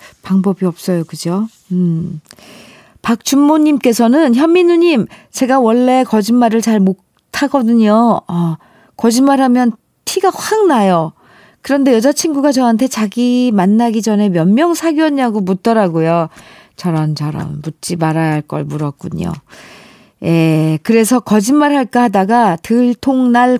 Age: 40-59